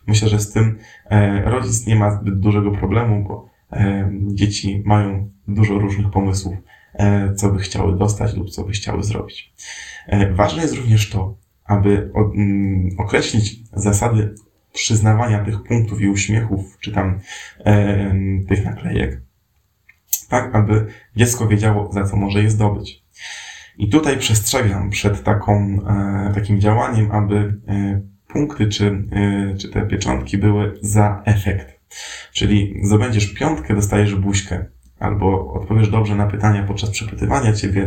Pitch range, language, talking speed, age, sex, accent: 100-105 Hz, Polish, 125 wpm, 20-39, male, native